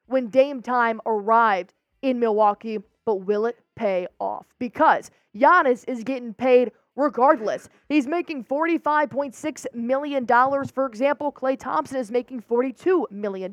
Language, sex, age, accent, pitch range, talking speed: English, female, 20-39, American, 235-305 Hz, 130 wpm